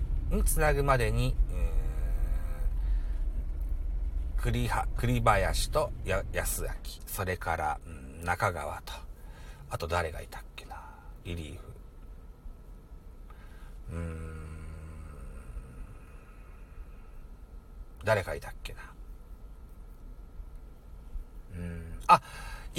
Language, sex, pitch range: Japanese, male, 70-110 Hz